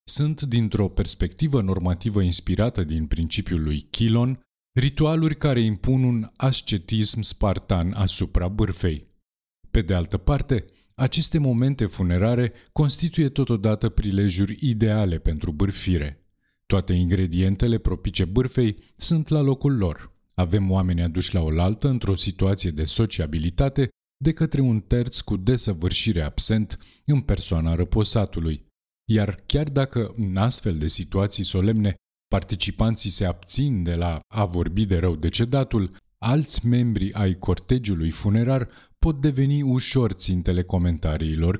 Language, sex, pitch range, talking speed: Romanian, male, 90-120 Hz, 125 wpm